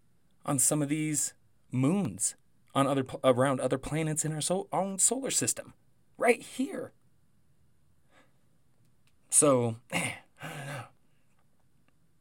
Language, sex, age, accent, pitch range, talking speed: English, male, 30-49, American, 120-155 Hz, 115 wpm